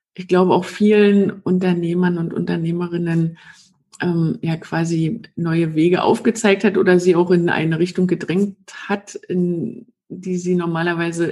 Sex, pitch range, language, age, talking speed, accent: female, 175-205 Hz, German, 50-69, 140 wpm, German